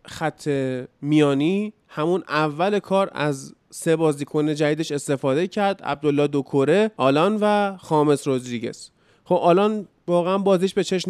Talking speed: 130 wpm